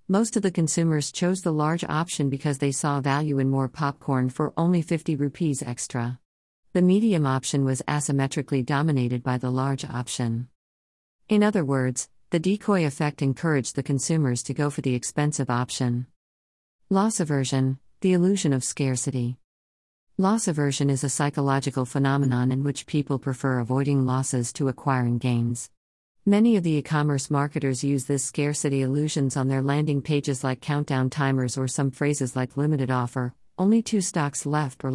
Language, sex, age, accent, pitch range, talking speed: English, female, 50-69, American, 130-155 Hz, 160 wpm